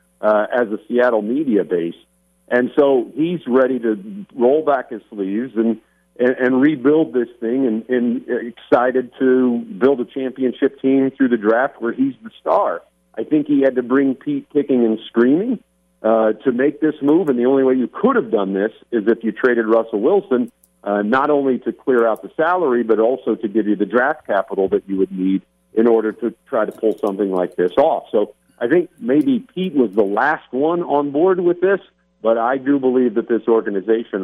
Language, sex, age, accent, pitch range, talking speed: English, male, 50-69, American, 105-135 Hz, 205 wpm